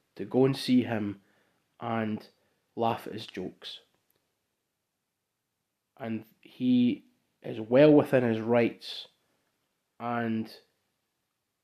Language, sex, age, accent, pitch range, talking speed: English, male, 20-39, British, 120-155 Hz, 95 wpm